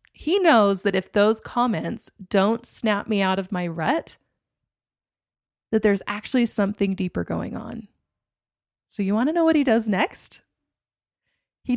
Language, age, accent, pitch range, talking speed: English, 20-39, American, 195-245 Hz, 155 wpm